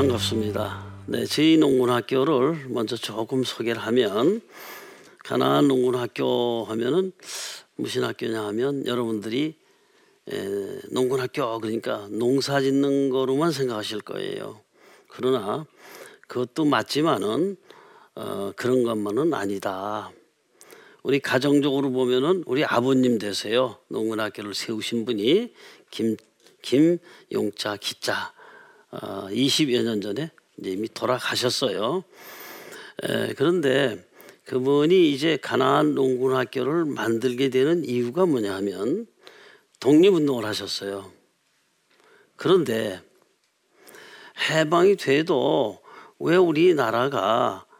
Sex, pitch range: male, 115-170 Hz